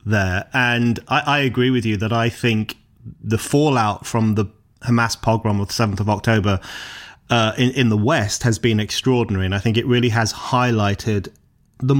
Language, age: English, 30-49